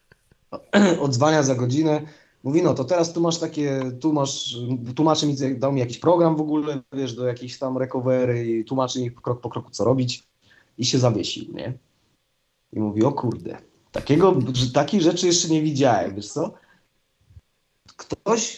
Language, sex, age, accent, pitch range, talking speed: Polish, male, 30-49, native, 125-155 Hz, 160 wpm